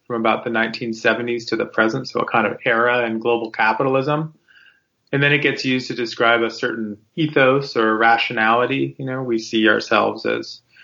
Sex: male